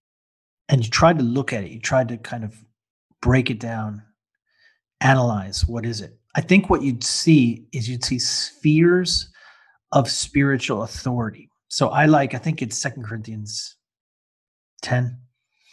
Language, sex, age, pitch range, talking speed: English, male, 40-59, 110-140 Hz, 155 wpm